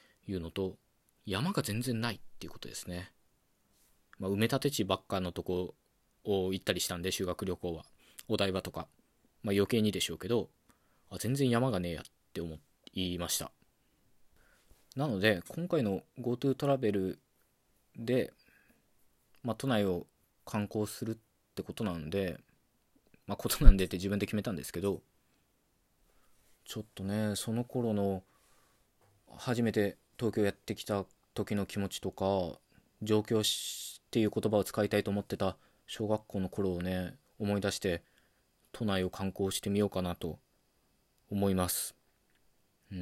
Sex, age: male, 20-39